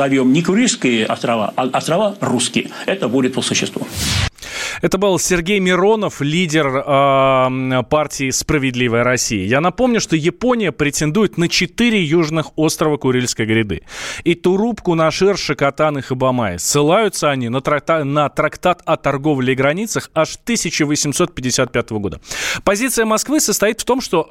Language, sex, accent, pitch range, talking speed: Russian, male, native, 125-170 Hz, 140 wpm